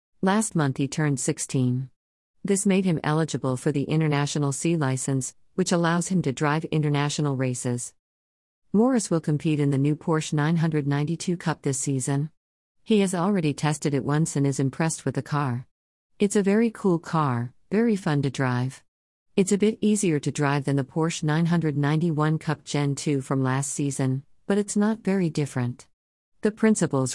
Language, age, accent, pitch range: English, 50-69, American, 135-165 Hz